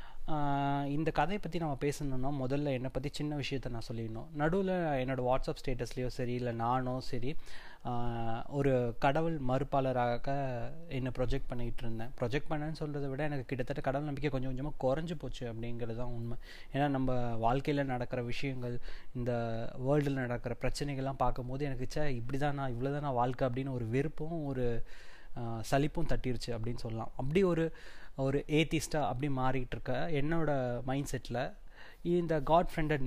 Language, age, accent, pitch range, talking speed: Tamil, 20-39, native, 125-150 Hz, 145 wpm